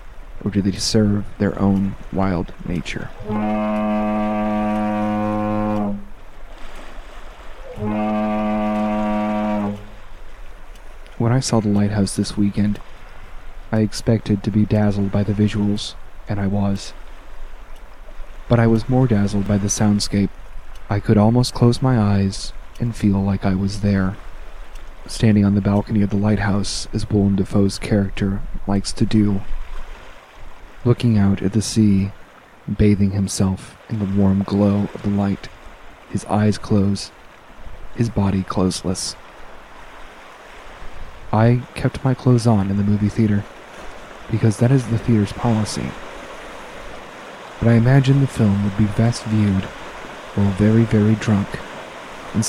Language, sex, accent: English, male, American